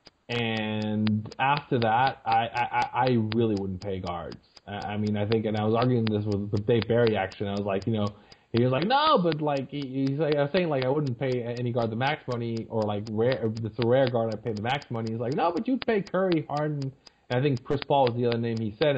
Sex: male